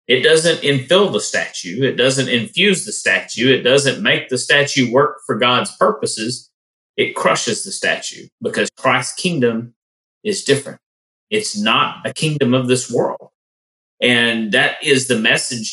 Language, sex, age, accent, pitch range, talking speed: English, male, 30-49, American, 115-140 Hz, 155 wpm